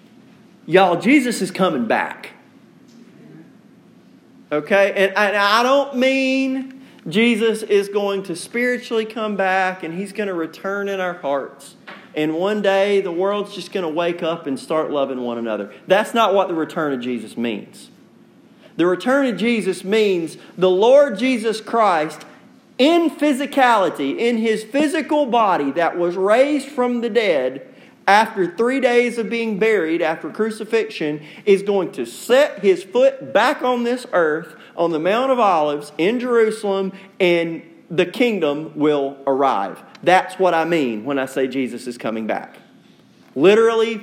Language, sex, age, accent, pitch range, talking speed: English, male, 40-59, American, 170-235 Hz, 155 wpm